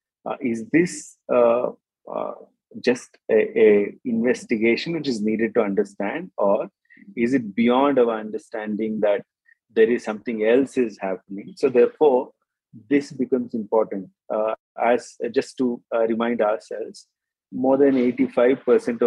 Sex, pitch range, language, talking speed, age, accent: male, 110-140 Hz, English, 130 wpm, 30-49, Indian